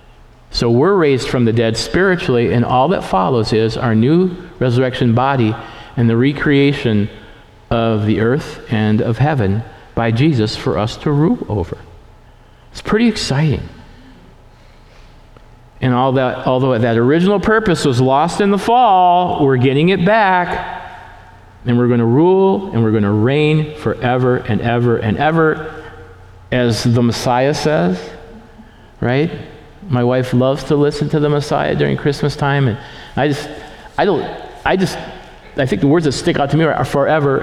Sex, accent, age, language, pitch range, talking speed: male, American, 50-69, English, 110-145 Hz, 160 wpm